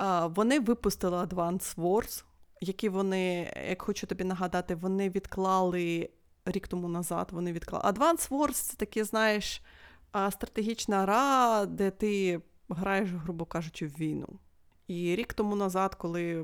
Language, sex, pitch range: Ukrainian, female, 180-220 Hz